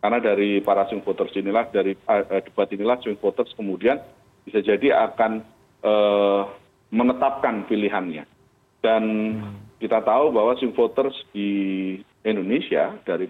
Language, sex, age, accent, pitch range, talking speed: Indonesian, male, 40-59, native, 95-115 Hz, 125 wpm